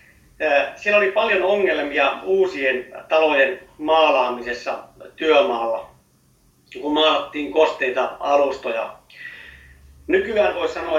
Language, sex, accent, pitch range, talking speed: Finnish, male, native, 130-160 Hz, 80 wpm